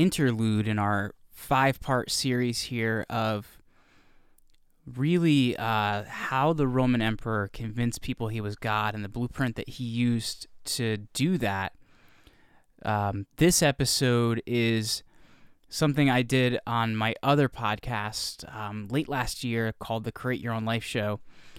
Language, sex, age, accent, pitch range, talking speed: English, male, 20-39, American, 115-135 Hz, 135 wpm